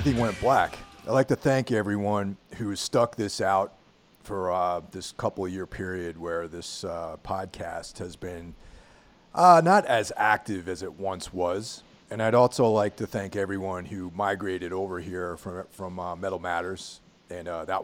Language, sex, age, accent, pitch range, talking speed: English, male, 40-59, American, 90-120 Hz, 170 wpm